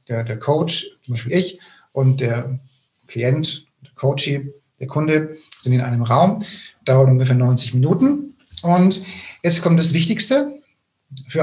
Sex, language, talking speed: male, German, 135 wpm